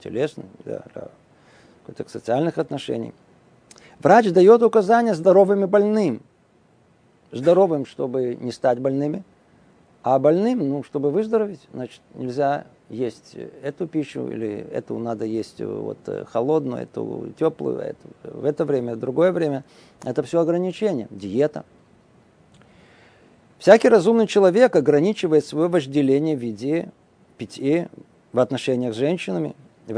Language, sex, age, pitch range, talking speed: Russian, male, 50-69, 135-195 Hz, 115 wpm